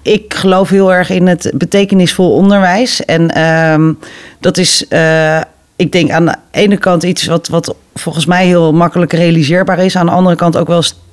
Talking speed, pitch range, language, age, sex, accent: 185 wpm, 150-175 Hz, Dutch, 40-59, female, Dutch